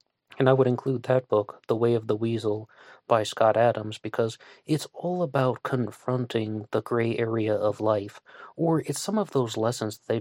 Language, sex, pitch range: English, male, 110-135 Hz